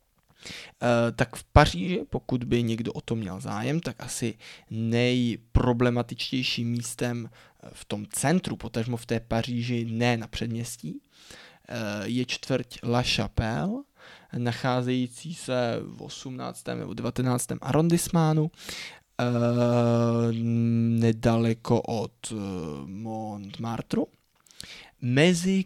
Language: Czech